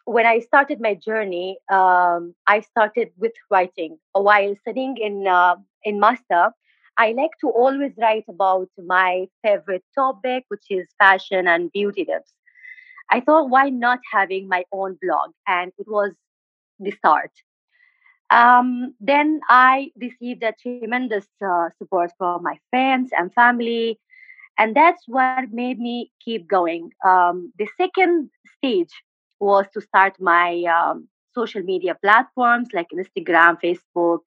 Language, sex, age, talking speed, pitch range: English, female, 30-49, 140 wpm, 190-260 Hz